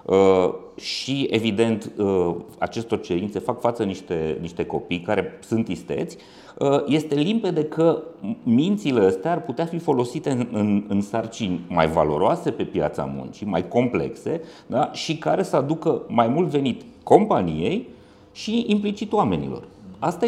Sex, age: male, 30-49